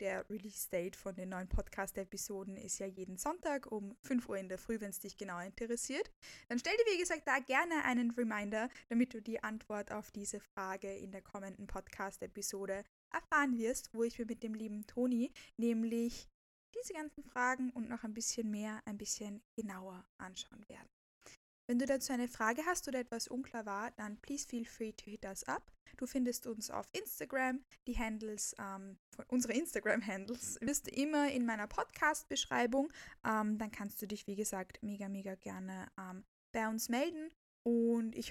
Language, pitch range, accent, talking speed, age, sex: German, 200-245 Hz, German, 180 wpm, 10-29, female